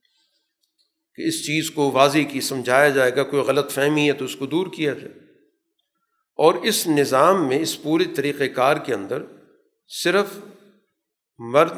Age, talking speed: 50-69, 160 wpm